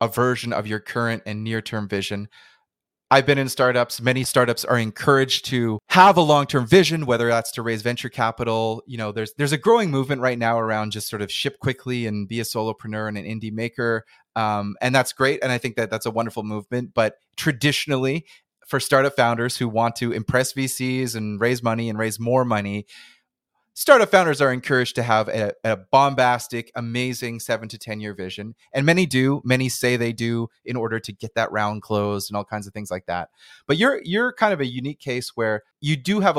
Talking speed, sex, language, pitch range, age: 210 wpm, male, English, 110-135 Hz, 30-49